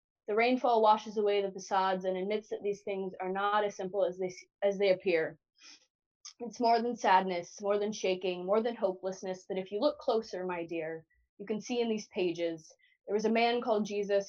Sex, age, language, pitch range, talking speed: female, 20-39, English, 190-215 Hz, 205 wpm